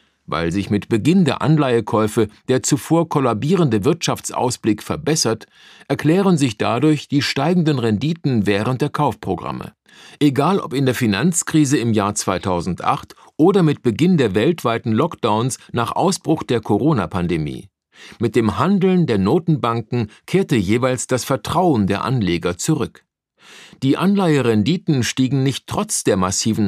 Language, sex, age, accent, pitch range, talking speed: German, male, 50-69, German, 110-155 Hz, 130 wpm